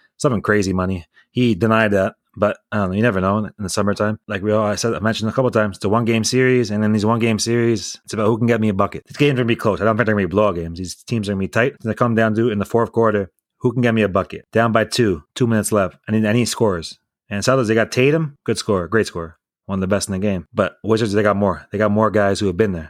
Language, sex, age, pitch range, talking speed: English, male, 30-49, 100-120 Hz, 305 wpm